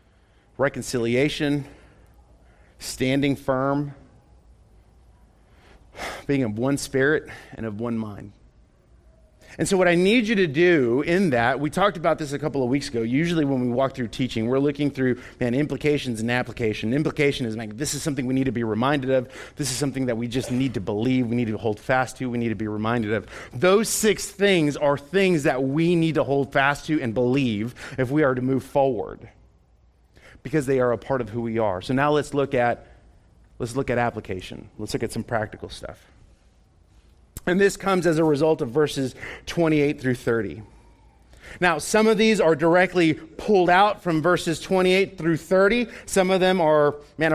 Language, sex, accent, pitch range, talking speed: English, male, American, 120-175 Hz, 190 wpm